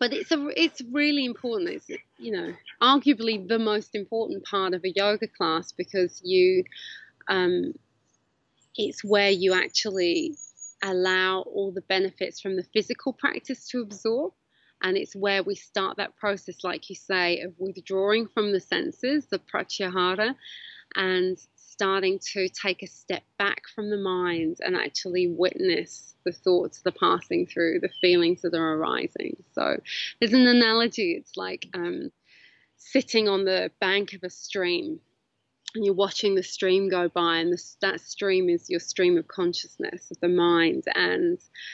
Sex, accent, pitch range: female, British, 185-255 Hz